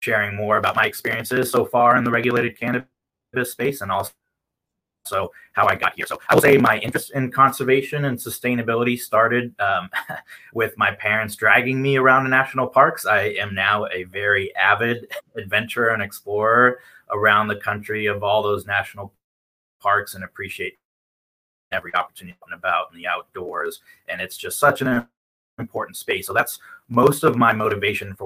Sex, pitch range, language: male, 105-125 Hz, English